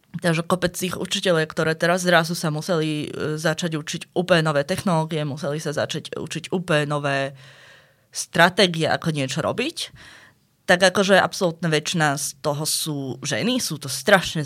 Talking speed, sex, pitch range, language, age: 140 wpm, female, 150-185 Hz, Slovak, 20-39